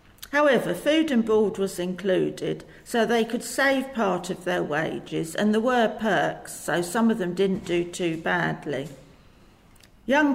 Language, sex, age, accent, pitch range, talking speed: English, female, 50-69, British, 175-220 Hz, 155 wpm